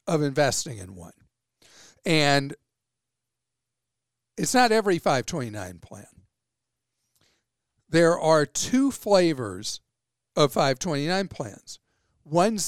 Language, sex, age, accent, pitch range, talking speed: English, male, 50-69, American, 135-190 Hz, 85 wpm